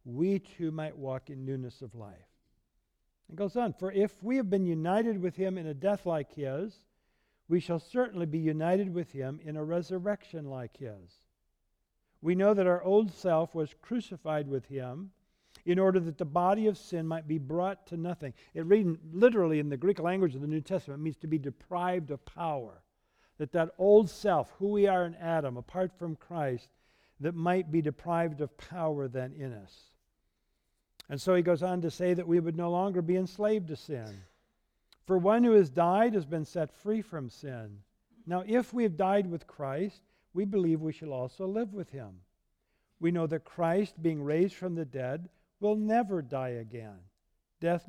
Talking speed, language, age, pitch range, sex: 190 wpm, English, 60-79, 140-190 Hz, male